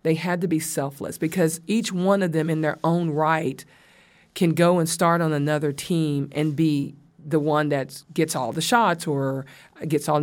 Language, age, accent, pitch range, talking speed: English, 40-59, American, 150-175 Hz, 195 wpm